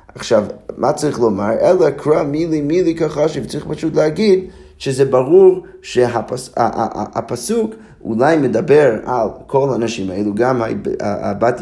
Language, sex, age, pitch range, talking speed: Hebrew, male, 30-49, 115-160 Hz, 135 wpm